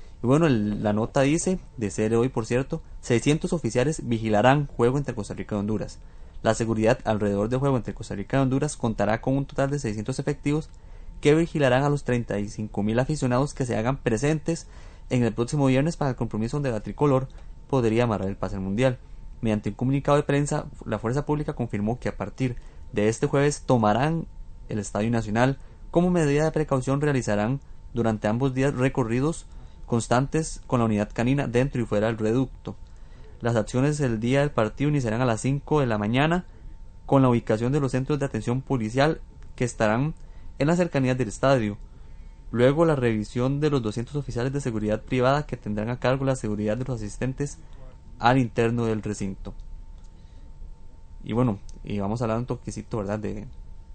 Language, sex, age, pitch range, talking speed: Spanish, male, 20-39, 105-135 Hz, 180 wpm